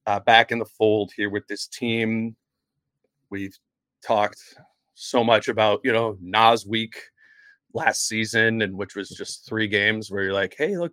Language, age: English, 30-49